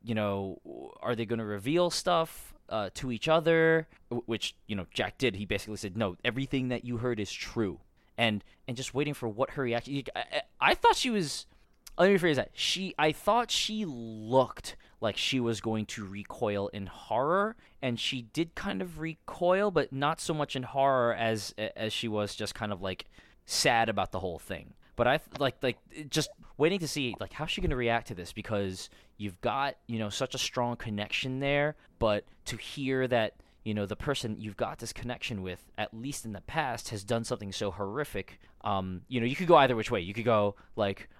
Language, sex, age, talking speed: English, male, 20-39, 215 wpm